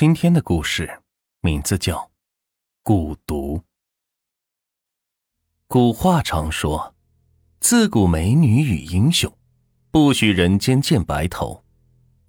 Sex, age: male, 30-49